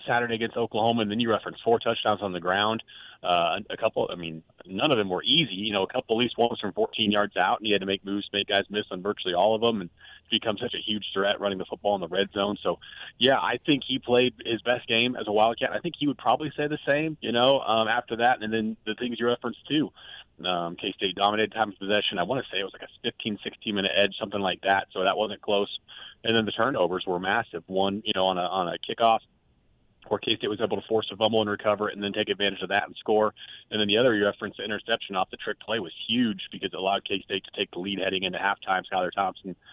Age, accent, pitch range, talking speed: 30-49, American, 100-115 Hz, 265 wpm